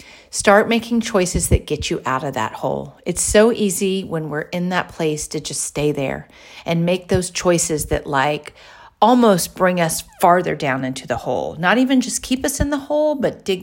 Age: 40-59